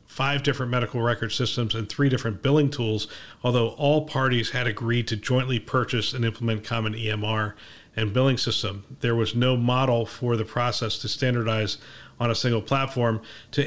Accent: American